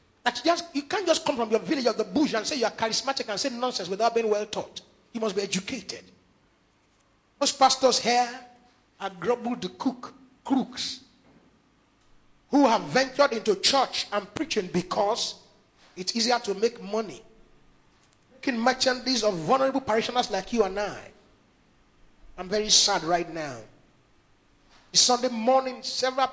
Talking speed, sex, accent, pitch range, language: 145 wpm, male, Nigerian, 215-275 Hz, English